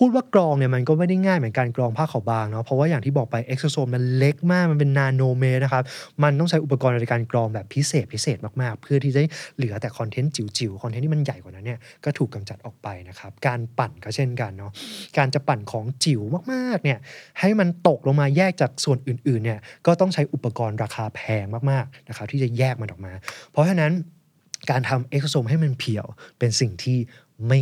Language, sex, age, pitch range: Thai, male, 20-39, 115-150 Hz